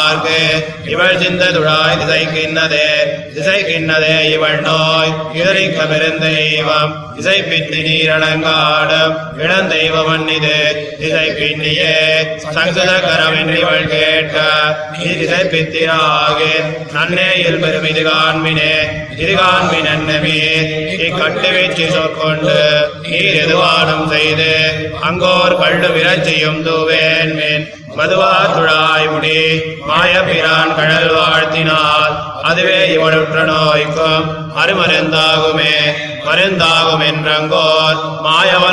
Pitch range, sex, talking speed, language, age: 155-165 Hz, male, 45 wpm, Tamil, 20-39